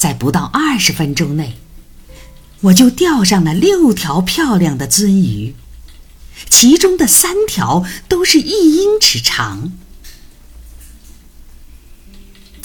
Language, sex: Chinese, female